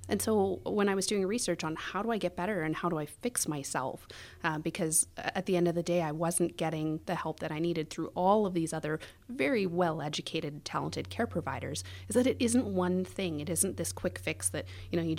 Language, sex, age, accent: English, female, 30-49, American